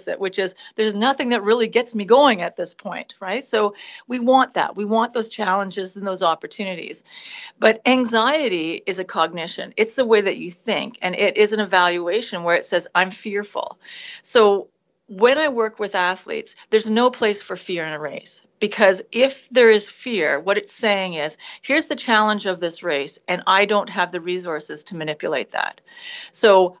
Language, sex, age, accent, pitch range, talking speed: English, female, 40-59, American, 185-245 Hz, 190 wpm